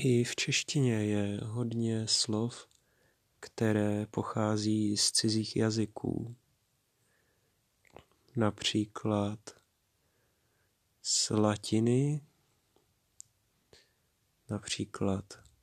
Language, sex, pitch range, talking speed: Czech, male, 105-115 Hz, 60 wpm